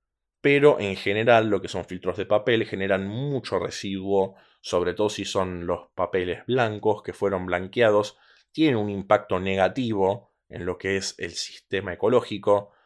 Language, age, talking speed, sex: Spanish, 20-39, 155 wpm, male